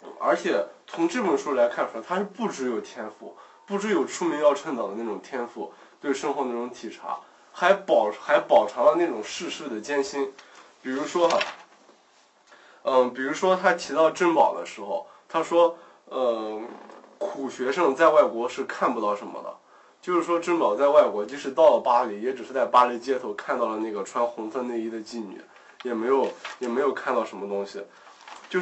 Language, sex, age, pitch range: Chinese, male, 20-39, 130-195 Hz